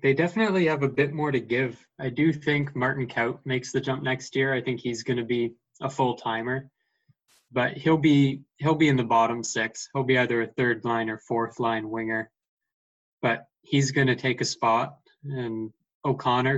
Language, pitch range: English, 115-135 Hz